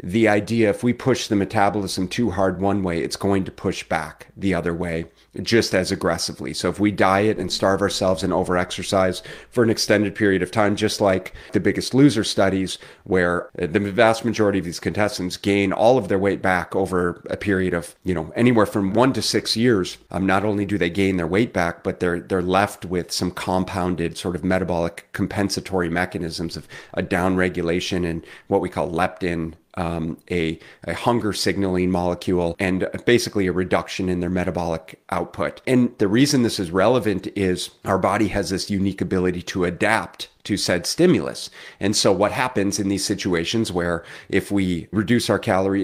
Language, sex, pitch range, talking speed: English, male, 90-105 Hz, 190 wpm